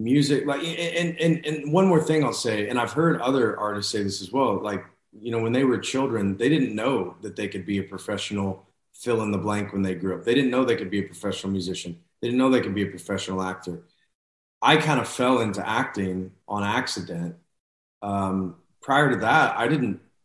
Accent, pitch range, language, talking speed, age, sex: American, 95-125 Hz, English, 220 wpm, 30-49, male